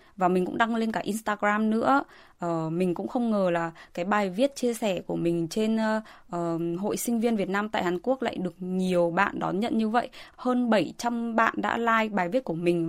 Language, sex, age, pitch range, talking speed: Vietnamese, female, 20-39, 170-230 Hz, 225 wpm